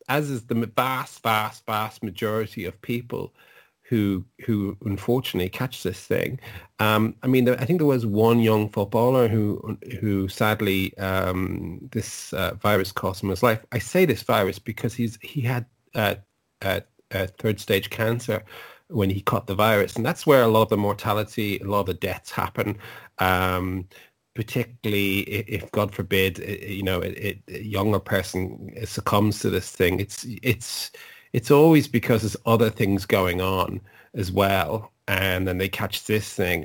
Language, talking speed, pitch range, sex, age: English, 170 wpm, 95-115 Hz, male, 30-49